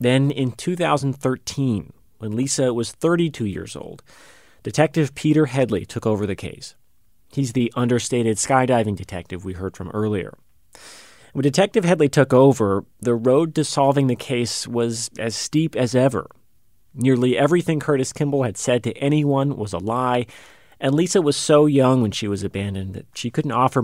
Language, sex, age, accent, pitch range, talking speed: English, male, 30-49, American, 110-135 Hz, 165 wpm